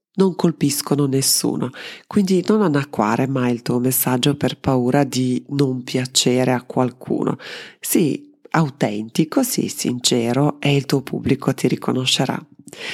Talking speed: 135 wpm